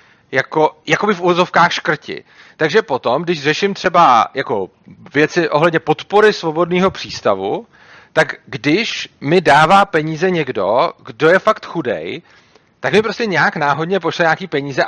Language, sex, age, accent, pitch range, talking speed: Czech, male, 40-59, native, 155-195 Hz, 140 wpm